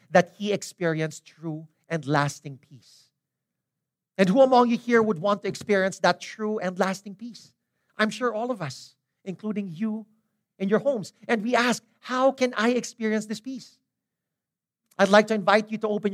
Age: 50-69